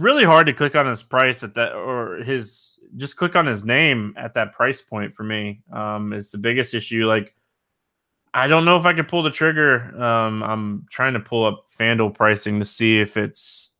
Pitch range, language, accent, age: 110-145 Hz, English, American, 20-39